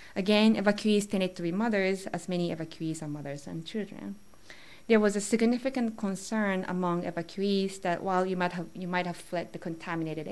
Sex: female